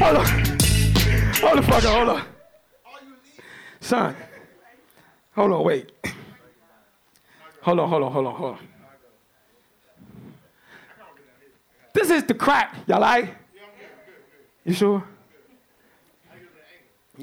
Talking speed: 95 wpm